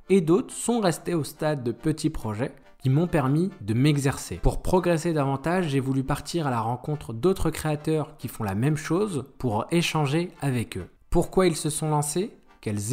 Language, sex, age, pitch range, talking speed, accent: French, male, 20-39, 125-165 Hz, 185 wpm, French